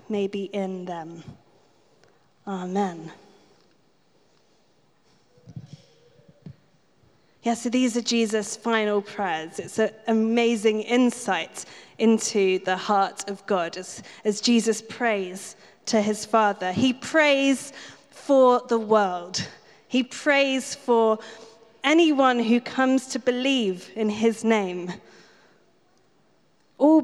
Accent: British